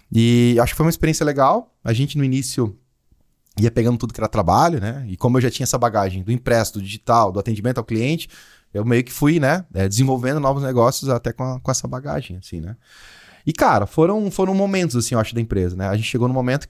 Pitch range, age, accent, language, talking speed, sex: 120-160 Hz, 20-39, Brazilian, Portuguese, 235 wpm, male